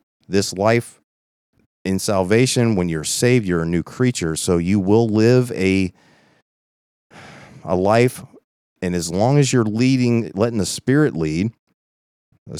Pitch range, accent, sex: 80-105 Hz, American, male